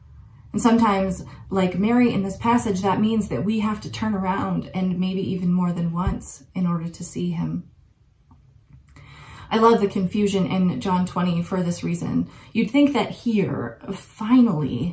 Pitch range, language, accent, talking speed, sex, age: 175-220 Hz, English, American, 165 wpm, female, 20-39